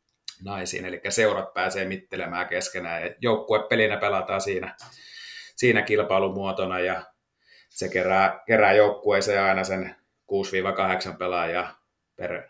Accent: native